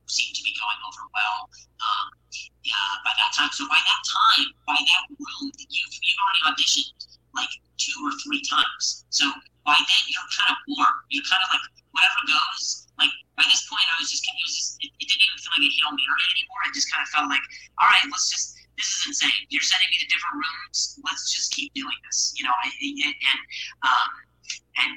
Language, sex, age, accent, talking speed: English, male, 30-49, American, 215 wpm